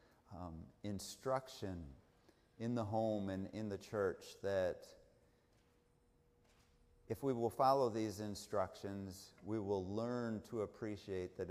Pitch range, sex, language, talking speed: 105-130 Hz, male, English, 115 wpm